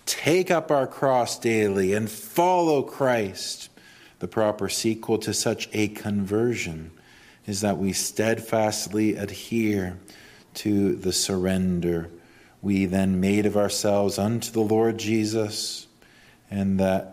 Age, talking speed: 40-59, 120 wpm